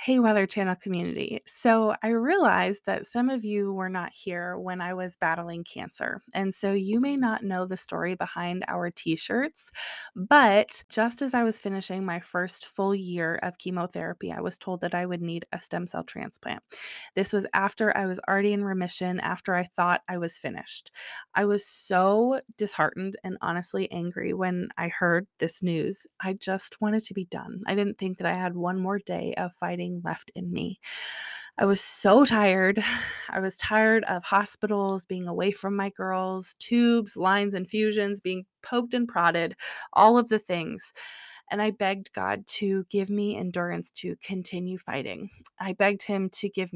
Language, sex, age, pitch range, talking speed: English, female, 20-39, 180-210 Hz, 180 wpm